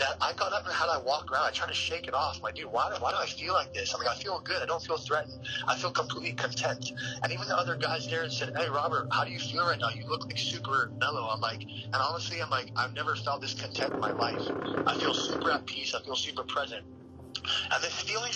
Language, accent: English, American